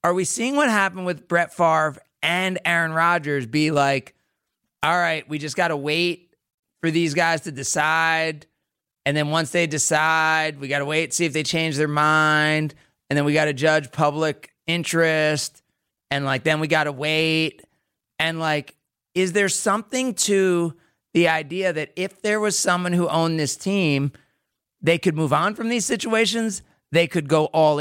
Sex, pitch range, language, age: male, 155-200 Hz, English, 30-49